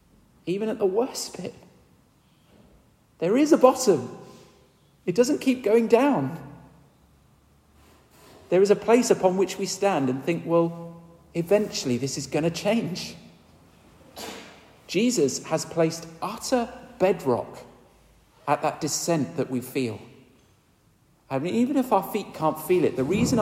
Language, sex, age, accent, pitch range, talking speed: English, male, 40-59, British, 110-180 Hz, 135 wpm